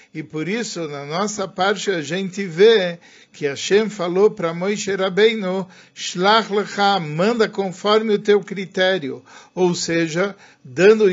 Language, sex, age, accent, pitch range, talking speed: Portuguese, male, 50-69, Brazilian, 155-200 Hz, 130 wpm